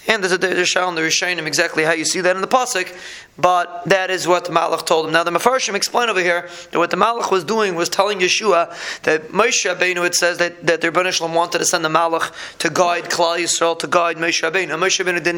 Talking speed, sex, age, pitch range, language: 225 wpm, male, 20-39, 170-195 Hz, English